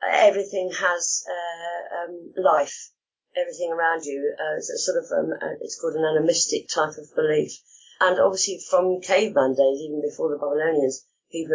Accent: British